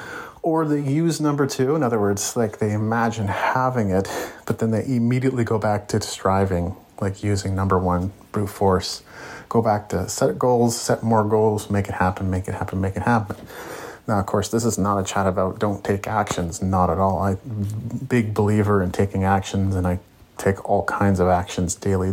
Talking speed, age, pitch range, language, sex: 200 wpm, 30-49, 95-115 Hz, English, male